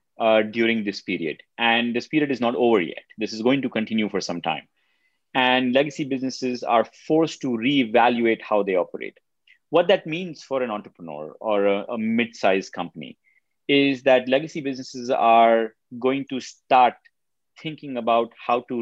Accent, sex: Indian, male